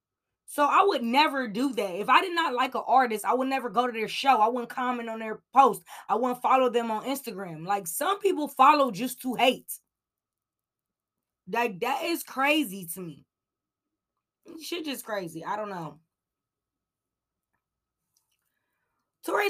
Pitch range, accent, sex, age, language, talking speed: 185-250 Hz, American, female, 20-39, English, 160 wpm